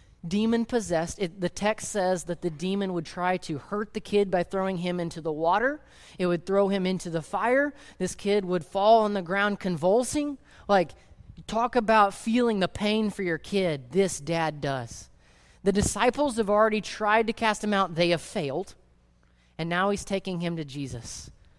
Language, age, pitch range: English, 30-49, 150-200 Hz